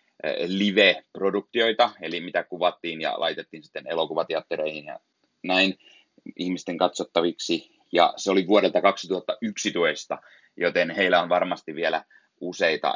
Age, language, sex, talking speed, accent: 30-49, Finnish, male, 105 wpm, native